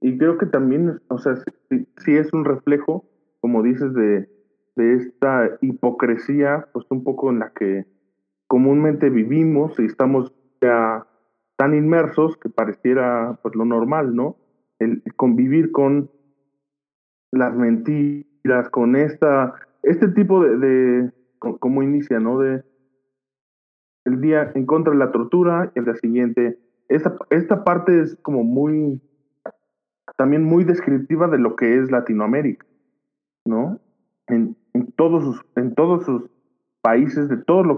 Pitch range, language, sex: 115-150 Hz, Spanish, male